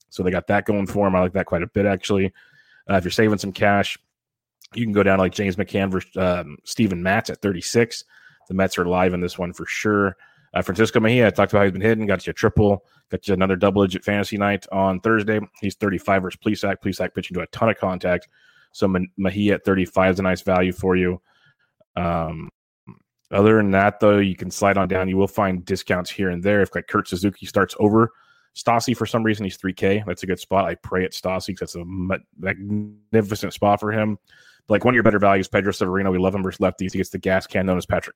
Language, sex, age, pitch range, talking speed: English, male, 30-49, 90-100 Hz, 240 wpm